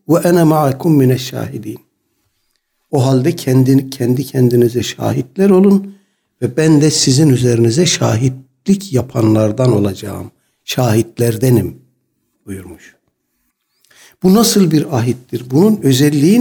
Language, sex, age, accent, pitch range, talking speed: Turkish, male, 60-79, native, 130-165 Hz, 95 wpm